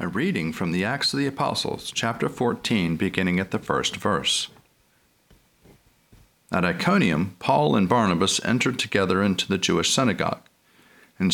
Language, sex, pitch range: English, male, 90-110 Hz